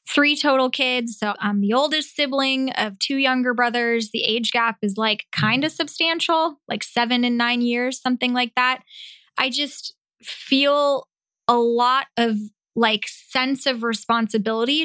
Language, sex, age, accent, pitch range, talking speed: English, female, 20-39, American, 220-255 Hz, 155 wpm